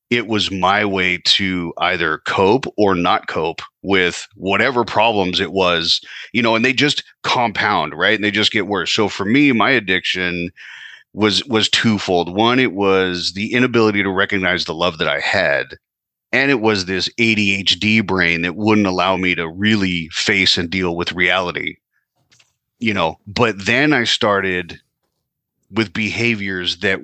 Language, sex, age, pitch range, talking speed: English, male, 30-49, 95-115 Hz, 160 wpm